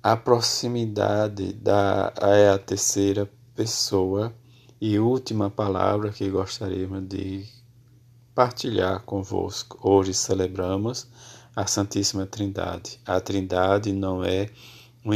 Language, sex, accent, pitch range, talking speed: Portuguese, male, Brazilian, 100-120 Hz, 105 wpm